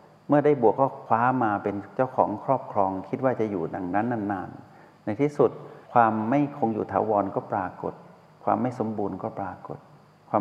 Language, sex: Thai, male